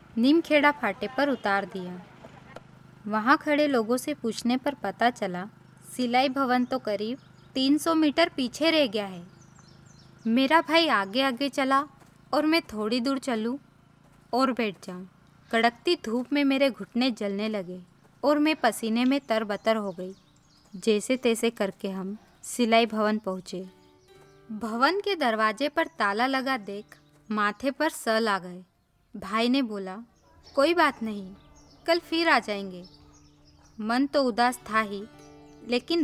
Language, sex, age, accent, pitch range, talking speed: Hindi, female, 20-39, native, 200-275 Hz, 145 wpm